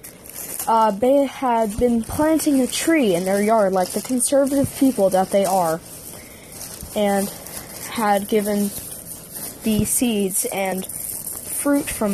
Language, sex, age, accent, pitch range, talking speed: English, female, 20-39, American, 195-245 Hz, 125 wpm